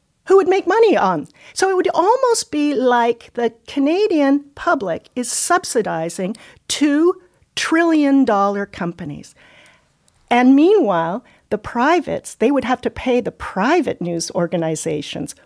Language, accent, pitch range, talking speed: English, American, 185-310 Hz, 130 wpm